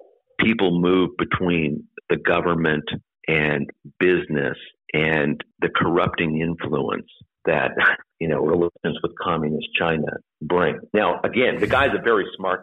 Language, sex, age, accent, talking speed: English, male, 50-69, American, 125 wpm